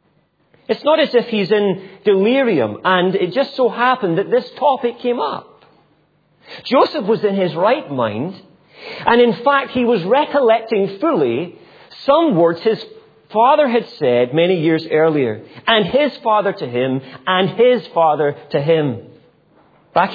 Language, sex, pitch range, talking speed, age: English, male, 155-230 Hz, 150 wpm, 40-59